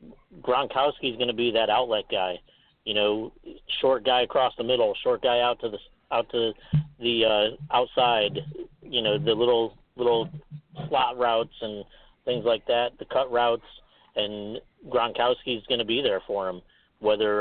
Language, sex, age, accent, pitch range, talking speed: English, male, 40-59, American, 110-150 Hz, 170 wpm